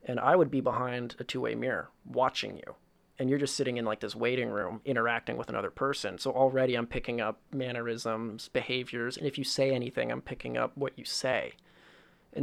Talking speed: 205 wpm